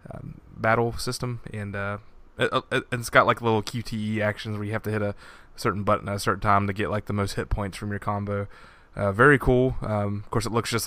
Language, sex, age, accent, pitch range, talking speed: English, male, 20-39, American, 100-110 Hz, 230 wpm